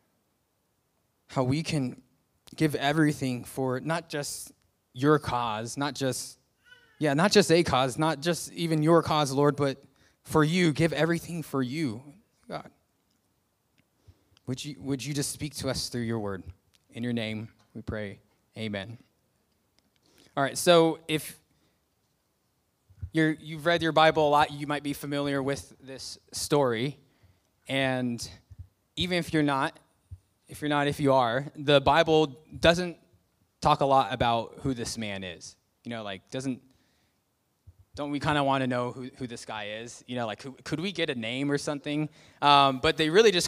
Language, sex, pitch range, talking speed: English, male, 115-150 Hz, 165 wpm